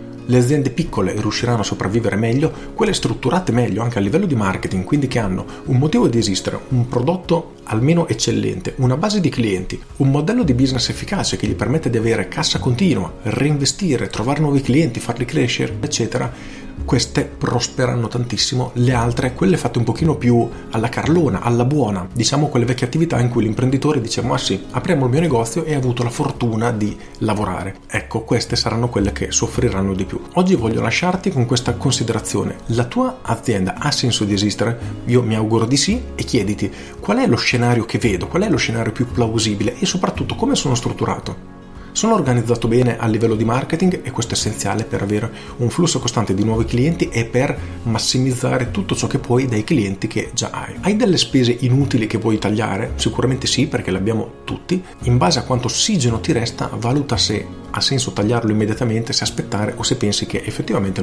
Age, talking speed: 40-59, 190 wpm